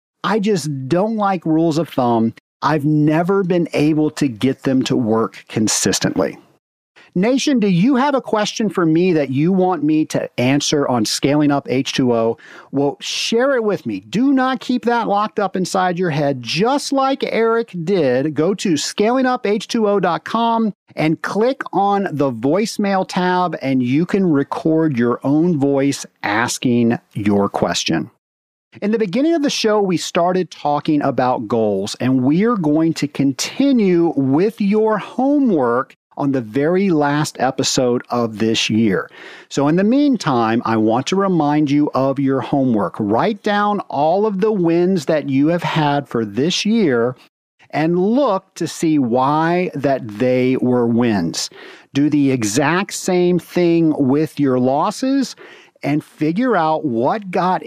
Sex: male